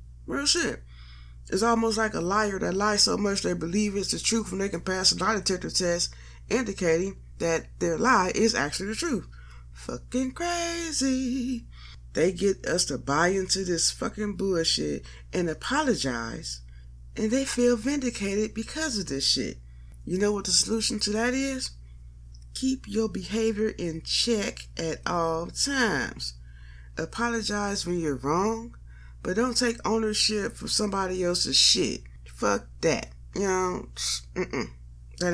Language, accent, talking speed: English, American, 150 wpm